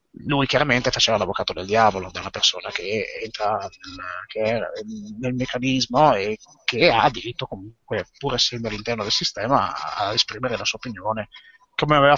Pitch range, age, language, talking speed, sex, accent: 115-145 Hz, 30-49, Italian, 155 wpm, male, native